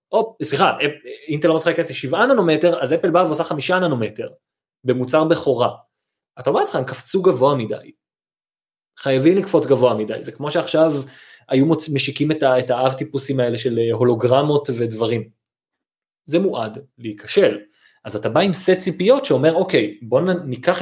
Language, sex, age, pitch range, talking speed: Hebrew, male, 20-39, 115-165 Hz, 145 wpm